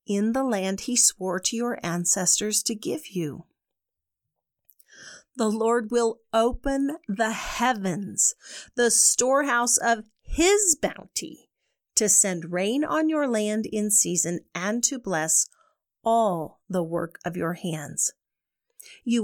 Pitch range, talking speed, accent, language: 185-255 Hz, 125 wpm, American, English